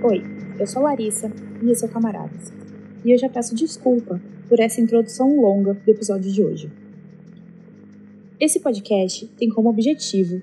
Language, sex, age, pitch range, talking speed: Portuguese, female, 20-39, 205-255 Hz, 155 wpm